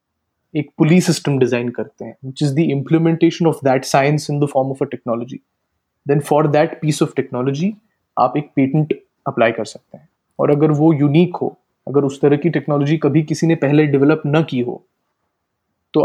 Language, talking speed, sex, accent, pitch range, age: Hindi, 185 wpm, male, native, 140-165 Hz, 30-49